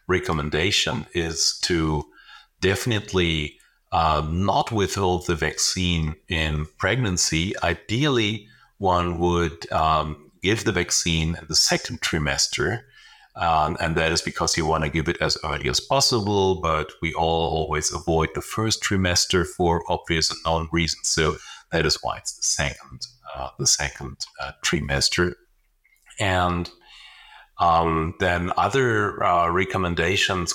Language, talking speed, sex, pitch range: English, 130 wpm, male, 80-100 Hz